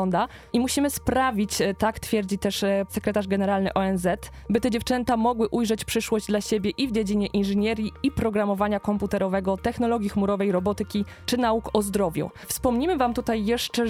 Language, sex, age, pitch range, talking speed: Polish, female, 20-39, 195-220 Hz, 150 wpm